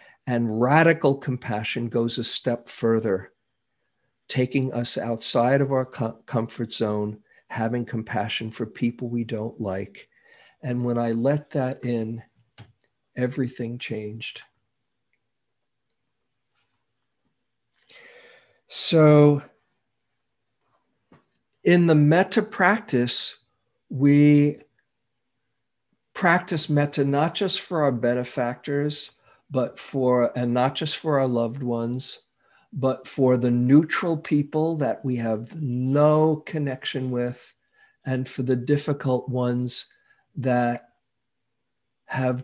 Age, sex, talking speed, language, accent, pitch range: 50-69, male, 100 wpm, English, American, 120-145 Hz